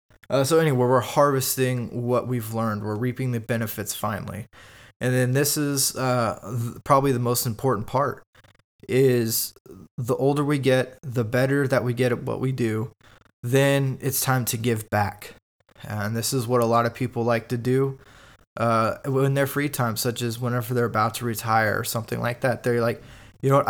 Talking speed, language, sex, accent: 185 wpm, English, male, American